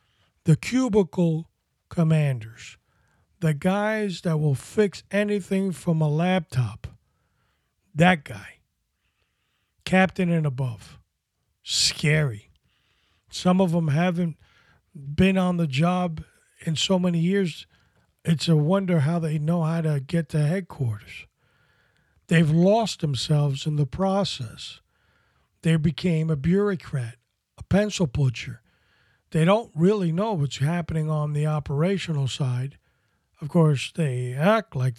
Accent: American